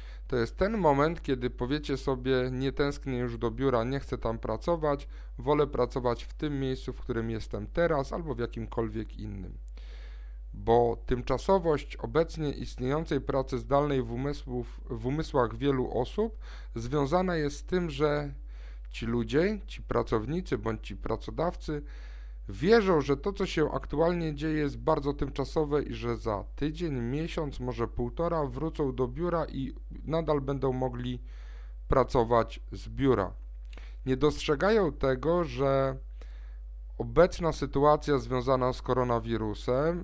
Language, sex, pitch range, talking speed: Polish, male, 115-150 Hz, 130 wpm